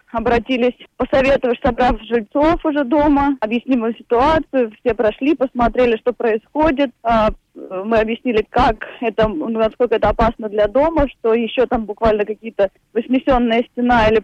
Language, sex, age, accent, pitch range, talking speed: Russian, female, 20-39, native, 225-280 Hz, 125 wpm